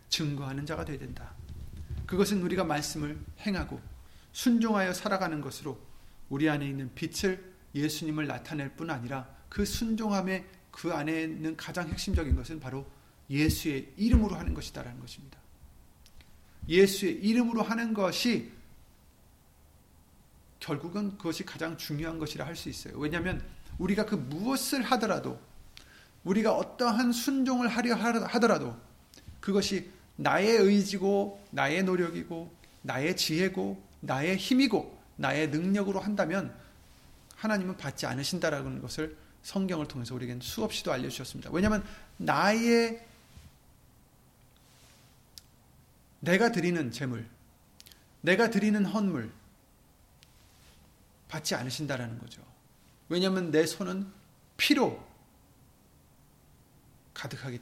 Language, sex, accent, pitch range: Korean, male, native, 130-200 Hz